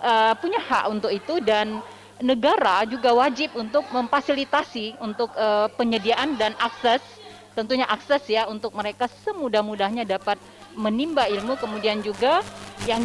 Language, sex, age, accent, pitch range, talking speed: Indonesian, female, 30-49, native, 210-265 Hz, 130 wpm